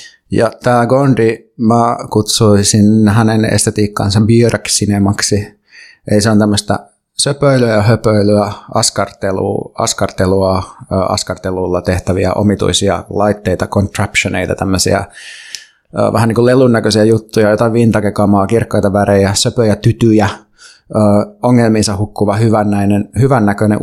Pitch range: 100-115 Hz